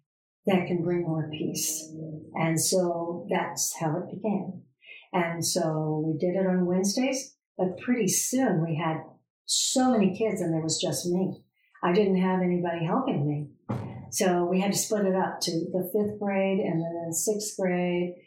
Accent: American